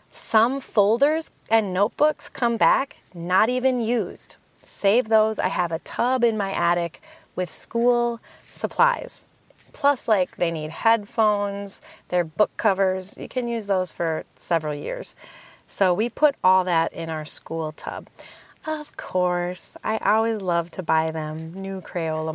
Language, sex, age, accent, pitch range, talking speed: English, female, 30-49, American, 175-245 Hz, 150 wpm